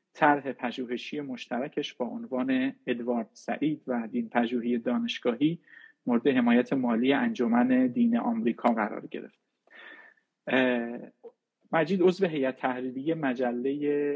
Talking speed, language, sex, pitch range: 100 wpm, Persian, male, 125-165 Hz